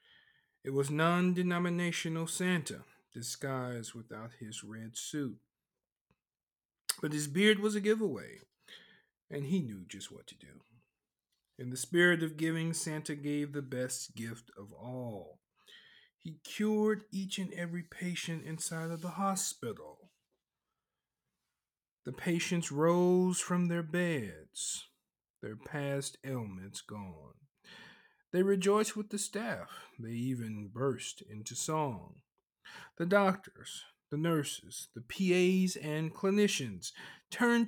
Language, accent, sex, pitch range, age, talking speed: English, American, male, 120-175 Hz, 50-69, 115 wpm